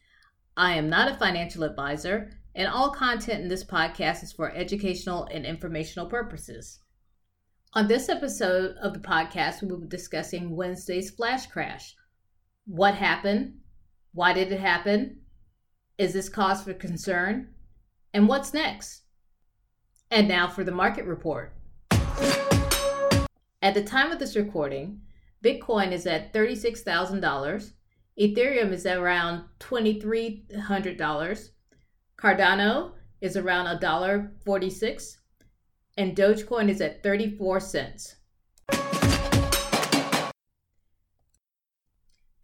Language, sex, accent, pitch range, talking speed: English, female, American, 170-215 Hz, 105 wpm